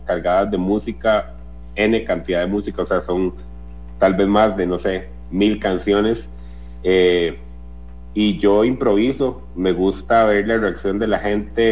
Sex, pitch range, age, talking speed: male, 85-105 Hz, 30-49, 155 wpm